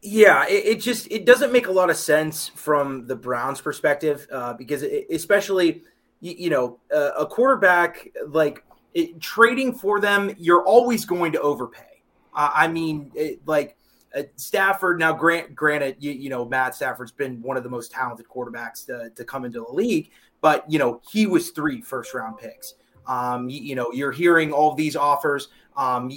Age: 30-49